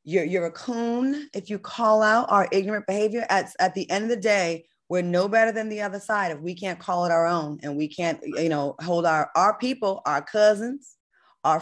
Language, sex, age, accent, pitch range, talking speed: English, female, 20-39, American, 170-225 Hz, 225 wpm